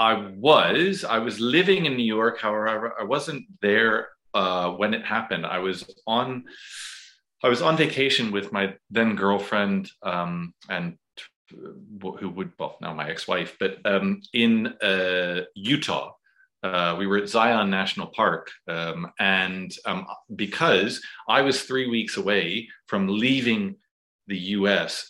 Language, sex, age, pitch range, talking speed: English, male, 30-49, 95-115 Hz, 145 wpm